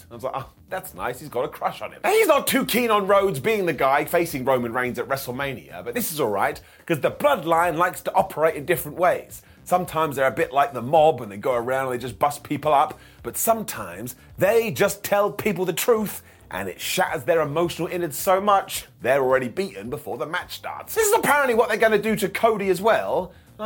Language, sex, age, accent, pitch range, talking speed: English, male, 30-49, British, 135-215 Hz, 240 wpm